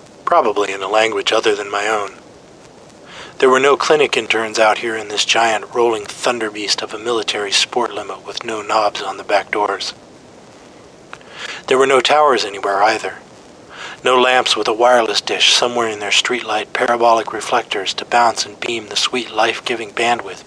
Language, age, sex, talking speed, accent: English, 40-59, male, 175 wpm, American